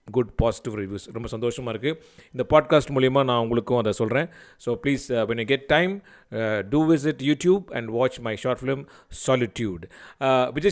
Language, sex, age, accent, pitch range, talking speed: Tamil, male, 30-49, native, 125-175 Hz, 150 wpm